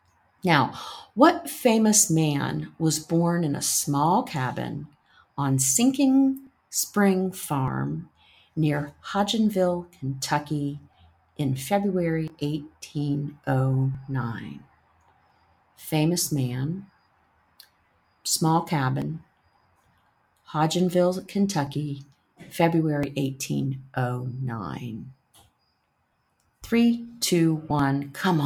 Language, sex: English, female